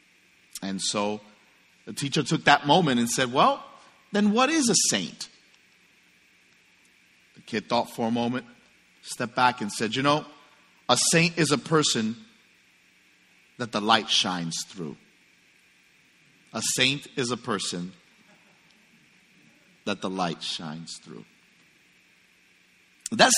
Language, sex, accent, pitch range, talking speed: English, male, American, 155-225 Hz, 125 wpm